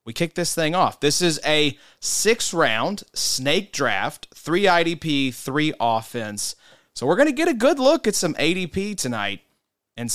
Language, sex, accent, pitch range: English, male, American, 120-160 Hz